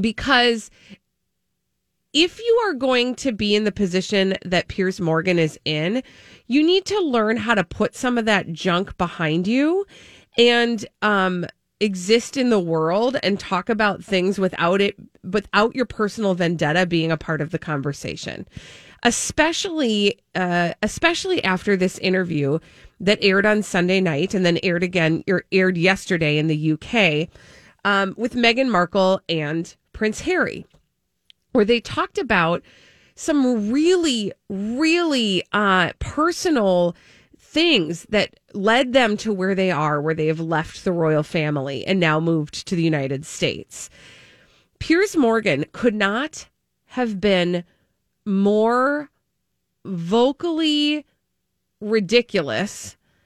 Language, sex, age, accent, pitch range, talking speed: English, female, 30-49, American, 175-240 Hz, 135 wpm